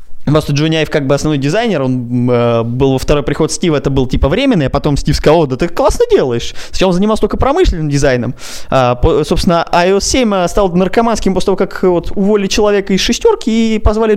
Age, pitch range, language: 20-39, 135-195 Hz, Russian